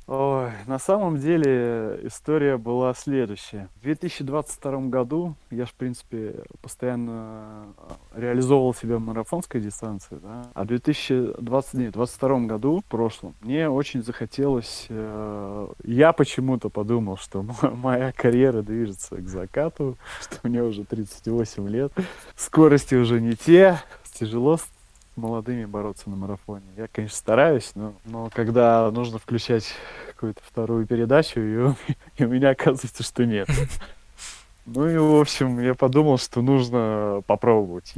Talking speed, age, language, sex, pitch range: 135 wpm, 20-39, Russian, male, 105-130 Hz